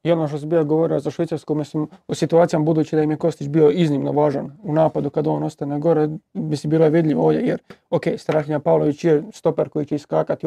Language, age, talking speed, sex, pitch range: Croatian, 30-49, 225 wpm, male, 150-165 Hz